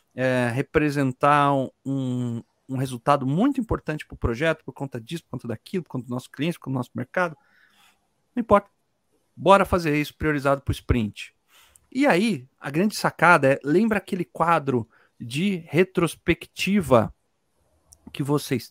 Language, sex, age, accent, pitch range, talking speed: Portuguese, male, 40-59, Brazilian, 135-195 Hz, 150 wpm